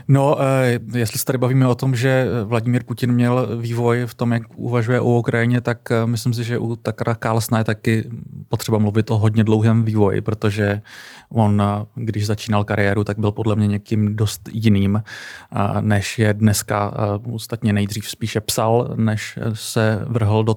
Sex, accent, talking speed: male, native, 165 wpm